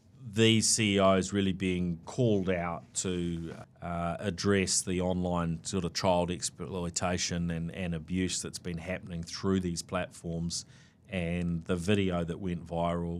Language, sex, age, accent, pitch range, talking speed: English, male, 30-49, Australian, 85-105 Hz, 135 wpm